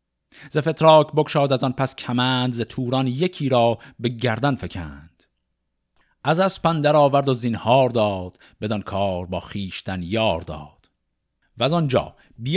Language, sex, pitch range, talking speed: Persian, male, 100-135 Hz, 135 wpm